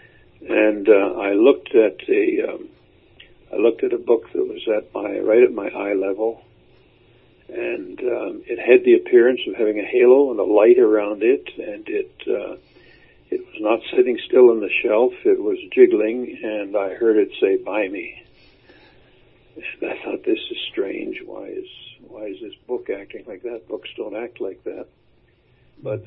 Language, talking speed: English, 180 wpm